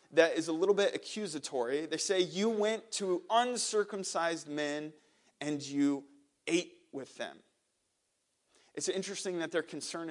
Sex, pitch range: male, 130-165 Hz